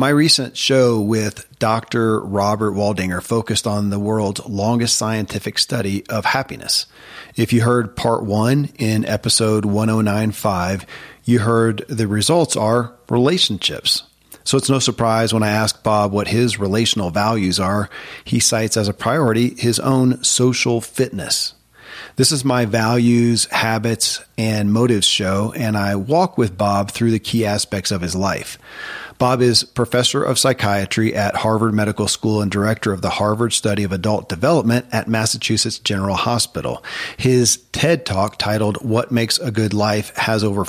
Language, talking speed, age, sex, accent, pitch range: English, 155 wpm, 40-59, male, American, 105-120 Hz